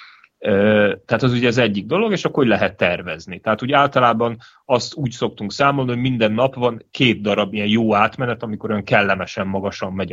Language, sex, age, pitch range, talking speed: Hungarian, male, 30-49, 100-115 Hz, 190 wpm